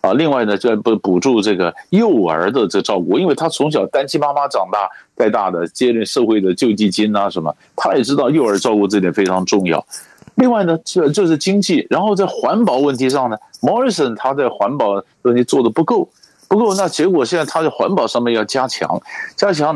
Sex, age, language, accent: male, 50-69, Chinese, native